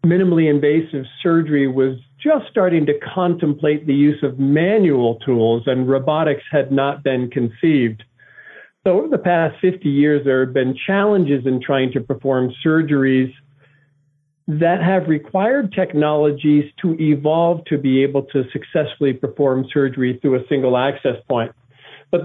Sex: male